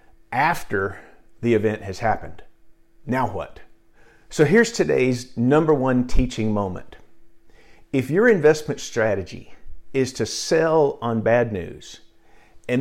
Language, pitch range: English, 110-150 Hz